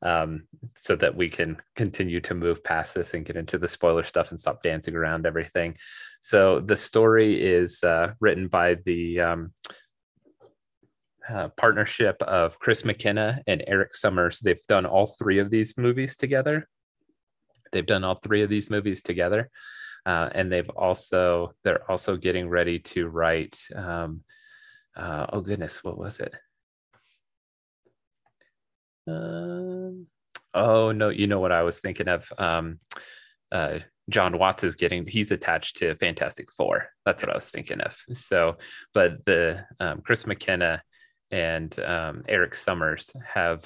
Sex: male